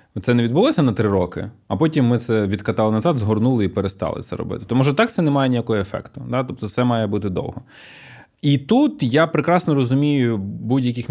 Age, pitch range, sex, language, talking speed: 20-39, 105-150 Hz, male, Ukrainian, 200 wpm